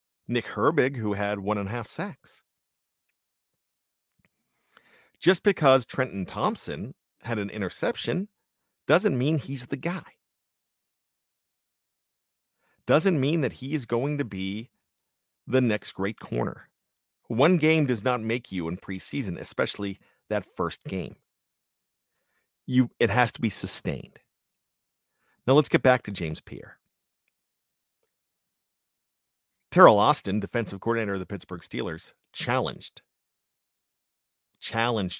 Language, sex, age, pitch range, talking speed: English, male, 50-69, 100-130 Hz, 115 wpm